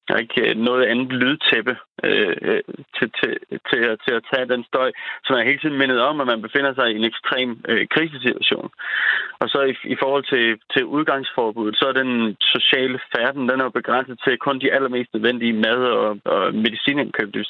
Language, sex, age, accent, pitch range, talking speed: Danish, male, 30-49, native, 120-140 Hz, 190 wpm